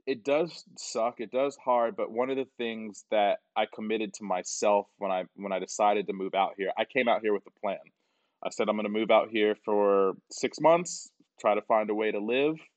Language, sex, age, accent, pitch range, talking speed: English, male, 20-39, American, 100-120 Hz, 235 wpm